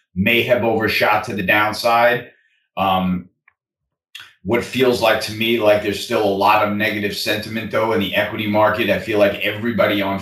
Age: 30-49